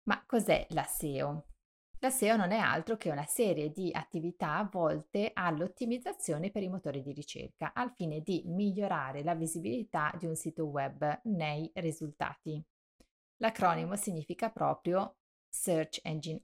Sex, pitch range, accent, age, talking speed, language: female, 150-200 Hz, native, 30-49, 140 wpm, Italian